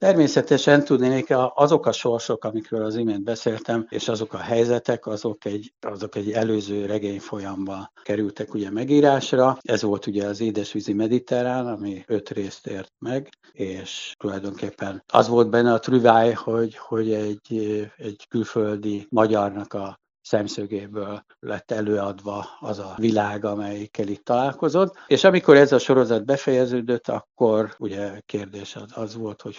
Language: Hungarian